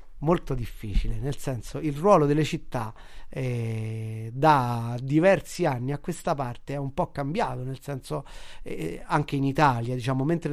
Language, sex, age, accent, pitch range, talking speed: Italian, male, 30-49, native, 130-155 Hz, 155 wpm